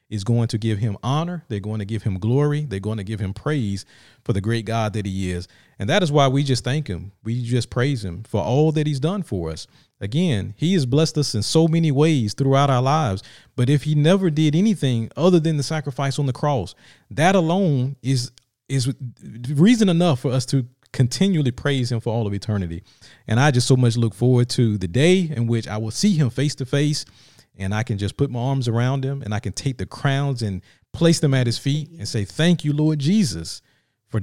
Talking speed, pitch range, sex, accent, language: 230 wpm, 110-150 Hz, male, American, English